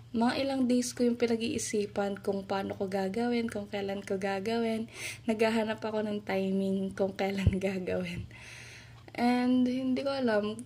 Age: 20-39